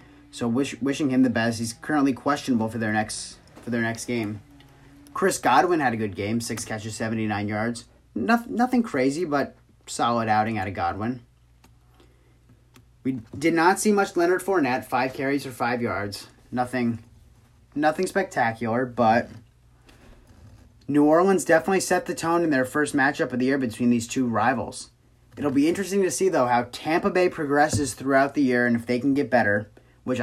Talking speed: 175 wpm